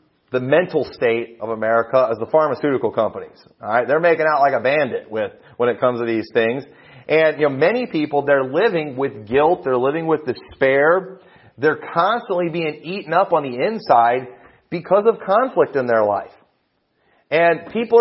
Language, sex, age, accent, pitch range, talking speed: English, male, 30-49, American, 145-195 Hz, 175 wpm